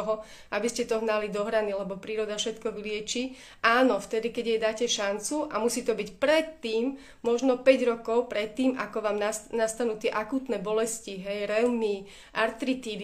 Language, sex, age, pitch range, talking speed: Slovak, female, 30-49, 210-240 Hz, 160 wpm